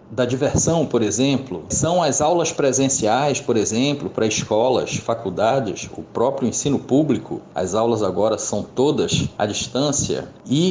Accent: Brazilian